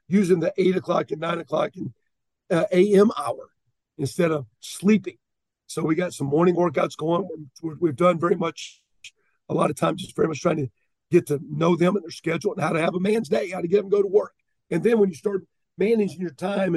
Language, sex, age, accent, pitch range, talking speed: English, male, 50-69, American, 165-195 Hz, 235 wpm